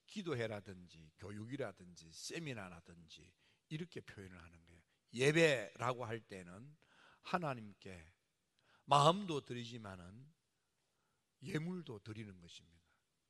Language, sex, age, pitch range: Korean, male, 50-69, 105-145 Hz